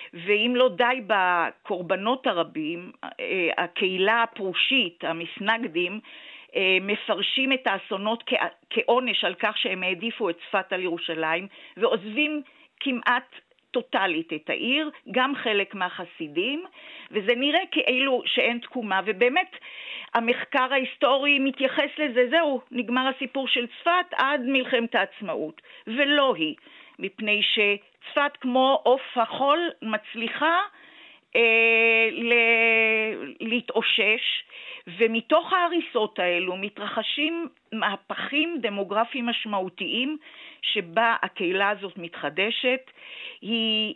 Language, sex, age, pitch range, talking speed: Hebrew, female, 50-69, 195-270 Hz, 95 wpm